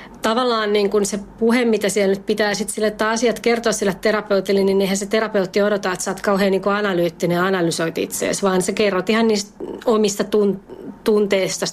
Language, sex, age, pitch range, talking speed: Finnish, female, 30-49, 180-220 Hz, 185 wpm